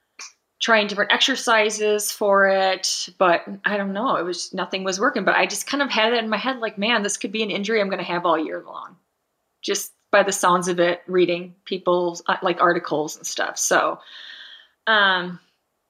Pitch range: 180-230 Hz